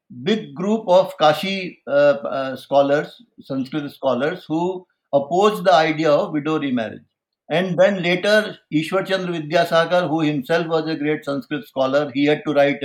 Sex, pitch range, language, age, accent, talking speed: male, 145-185 Hz, English, 60-79, Indian, 150 wpm